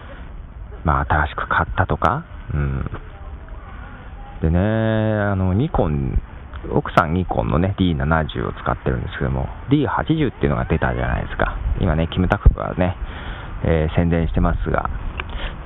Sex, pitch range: male, 80-105 Hz